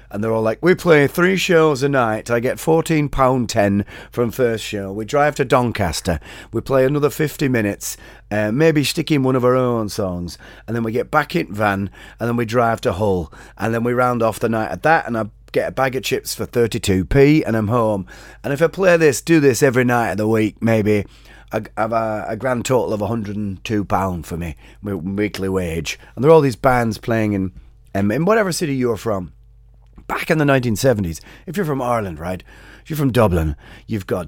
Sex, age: male, 30-49